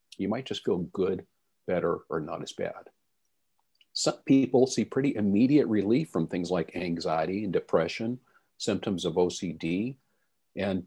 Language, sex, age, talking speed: English, male, 50-69, 145 wpm